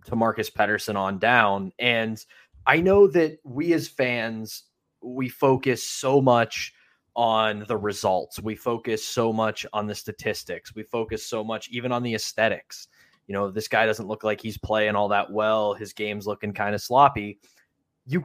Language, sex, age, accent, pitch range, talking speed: English, male, 20-39, American, 110-140 Hz, 175 wpm